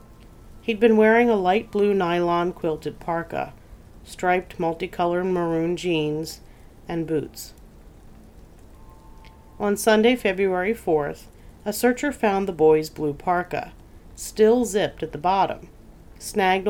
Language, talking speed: English, 115 wpm